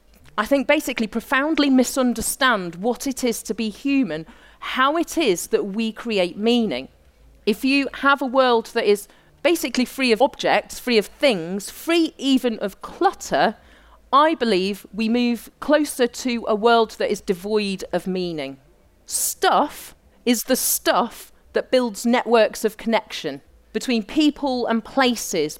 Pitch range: 210-270 Hz